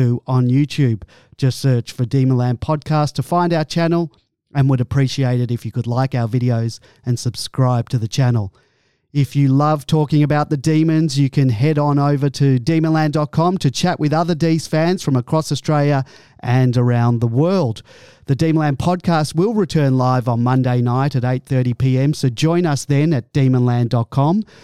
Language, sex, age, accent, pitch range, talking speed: English, male, 40-59, Australian, 125-145 Hz, 175 wpm